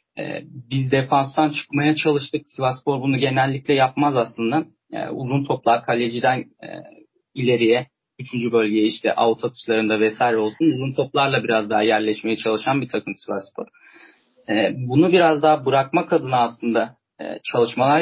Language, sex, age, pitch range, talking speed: Turkish, male, 40-59, 125-155 Hz, 120 wpm